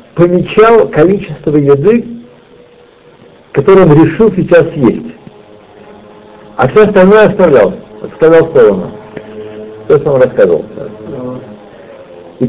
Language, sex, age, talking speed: Russian, male, 60-79, 90 wpm